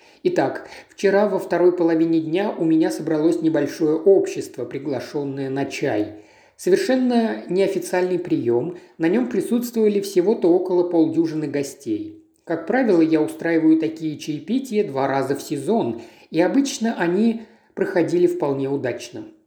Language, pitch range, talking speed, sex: Russian, 155-245 Hz, 125 wpm, male